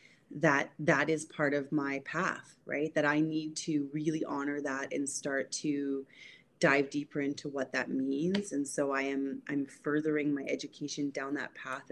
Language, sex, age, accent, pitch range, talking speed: English, female, 30-49, American, 135-150 Hz, 175 wpm